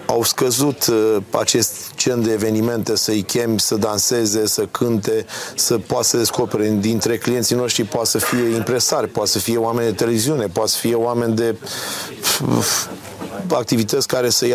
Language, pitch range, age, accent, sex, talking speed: Romanian, 110-135 Hz, 30-49, native, male, 155 wpm